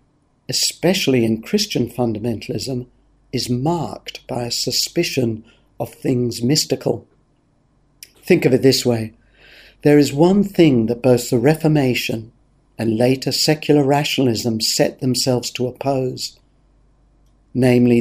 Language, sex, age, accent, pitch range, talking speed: English, male, 50-69, British, 120-145 Hz, 115 wpm